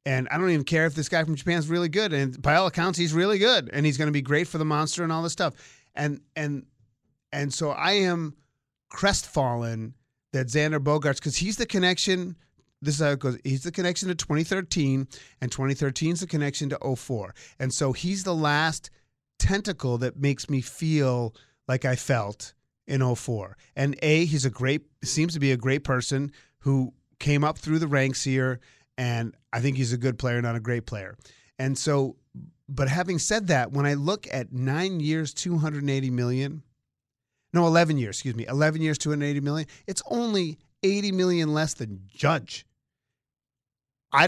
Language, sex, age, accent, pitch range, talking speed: English, male, 30-49, American, 130-165 Hz, 185 wpm